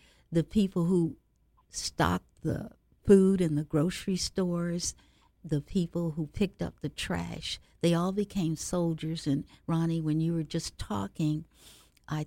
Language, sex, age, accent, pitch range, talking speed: English, female, 60-79, American, 145-165 Hz, 140 wpm